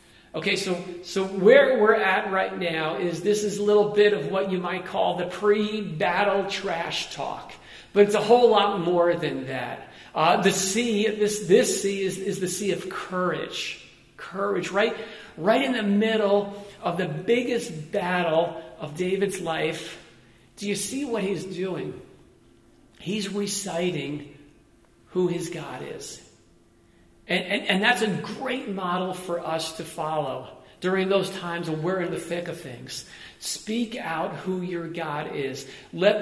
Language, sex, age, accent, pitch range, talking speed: English, male, 40-59, American, 165-205 Hz, 160 wpm